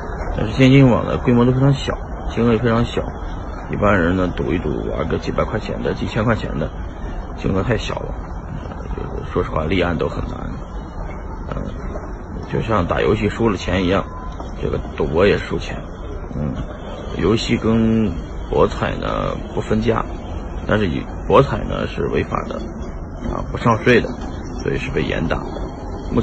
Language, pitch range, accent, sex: Chinese, 75-100 Hz, native, male